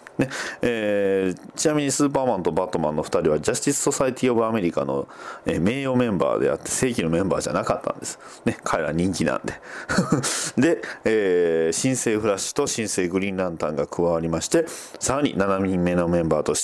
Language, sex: Japanese, male